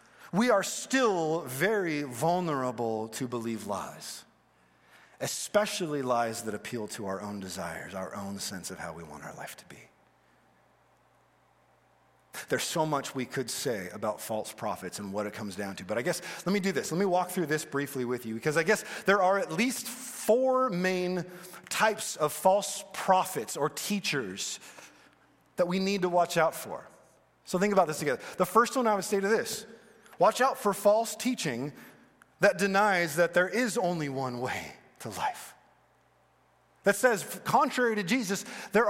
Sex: male